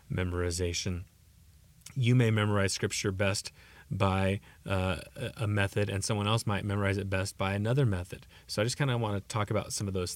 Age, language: 30-49, English